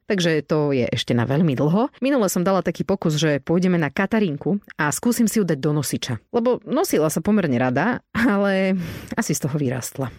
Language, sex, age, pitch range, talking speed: Slovak, female, 30-49, 150-210 Hz, 195 wpm